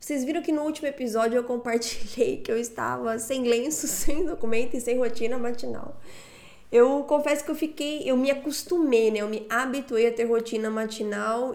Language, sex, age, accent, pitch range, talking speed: Portuguese, female, 10-29, Brazilian, 220-275 Hz, 180 wpm